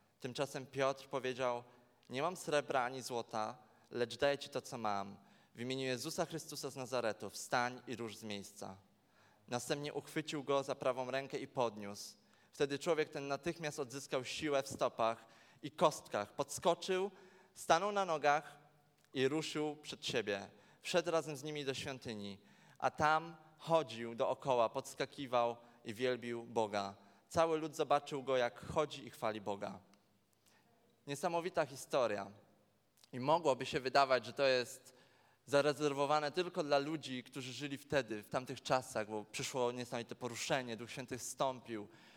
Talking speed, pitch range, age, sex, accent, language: 140 wpm, 120-150 Hz, 20-39, male, native, Polish